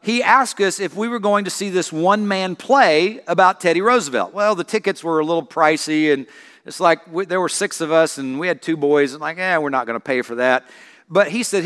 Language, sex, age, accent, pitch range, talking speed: English, male, 50-69, American, 175-245 Hz, 250 wpm